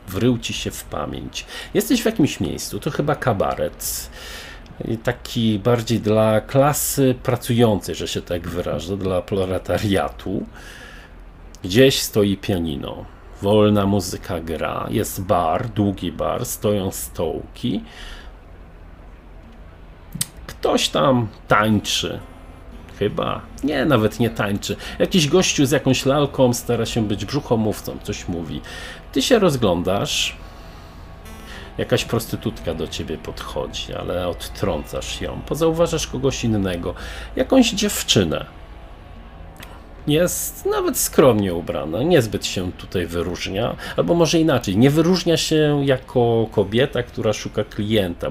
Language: Polish